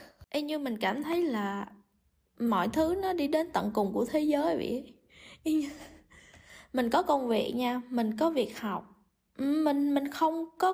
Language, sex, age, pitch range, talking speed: Vietnamese, female, 20-39, 220-295 Hz, 160 wpm